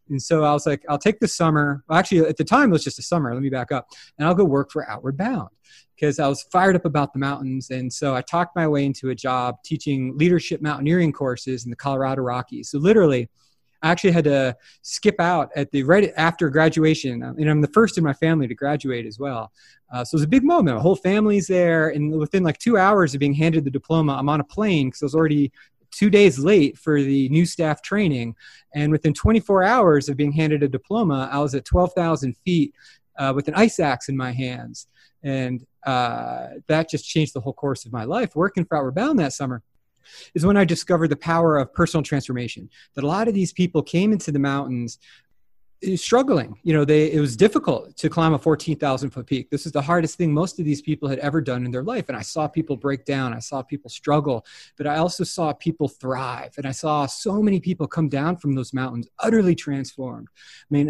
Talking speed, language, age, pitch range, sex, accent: 230 wpm, English, 30-49, 135-170 Hz, male, American